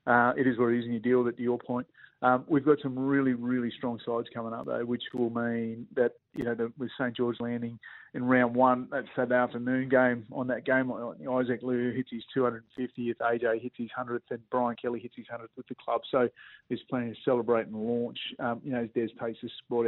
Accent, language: Australian, English